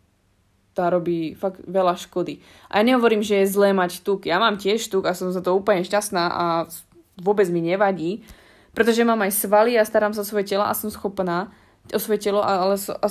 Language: Slovak